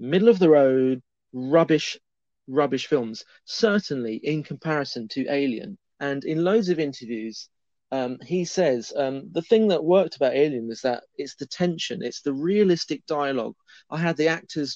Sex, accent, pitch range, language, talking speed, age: male, British, 140-200 Hz, English, 165 wpm, 30-49